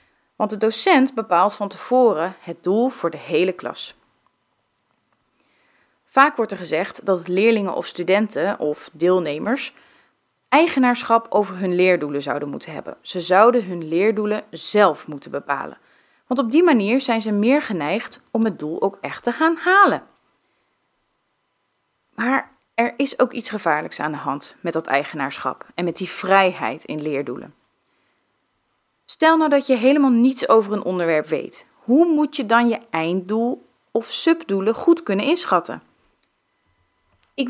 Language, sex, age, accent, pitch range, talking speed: Dutch, female, 30-49, Dutch, 180-265 Hz, 145 wpm